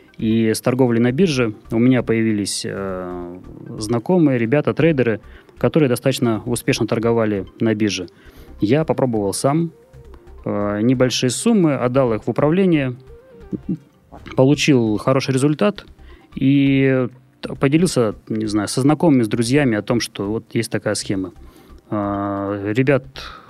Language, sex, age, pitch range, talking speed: Russian, male, 20-39, 105-140 Hz, 125 wpm